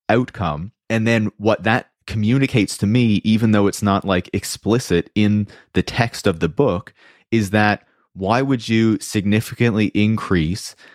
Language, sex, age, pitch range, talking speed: English, male, 30-49, 85-105 Hz, 150 wpm